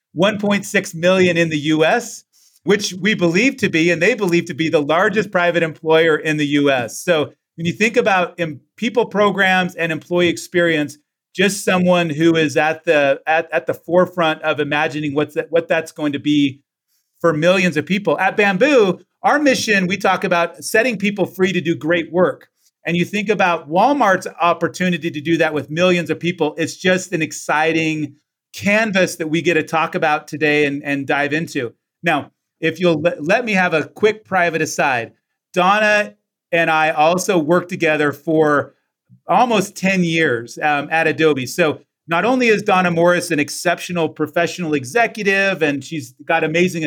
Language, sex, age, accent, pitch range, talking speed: English, male, 40-59, American, 155-190 Hz, 175 wpm